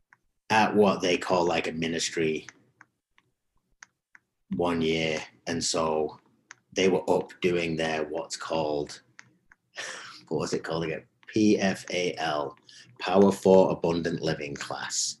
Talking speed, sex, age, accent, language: 110 wpm, male, 30-49, British, English